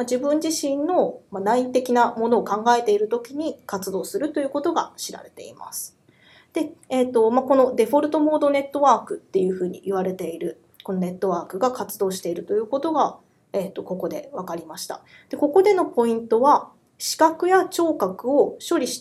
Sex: female